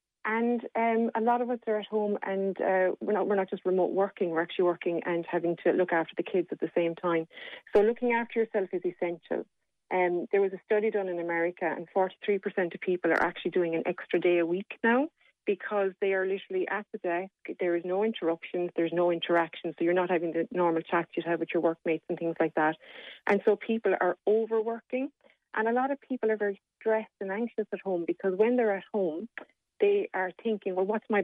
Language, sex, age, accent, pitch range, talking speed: English, female, 30-49, Irish, 175-215 Hz, 225 wpm